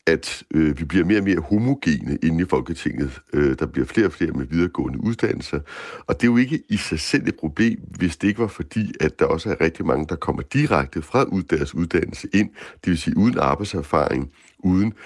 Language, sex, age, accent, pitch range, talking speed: Danish, male, 60-79, native, 80-105 Hz, 215 wpm